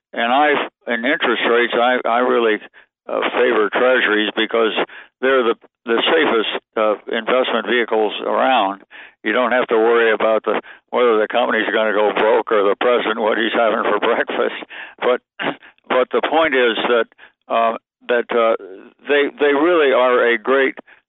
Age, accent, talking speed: 60-79, American, 160 wpm